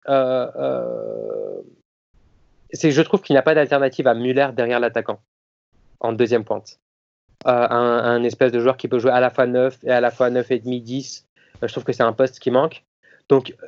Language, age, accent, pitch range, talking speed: French, 20-39, French, 120-140 Hz, 210 wpm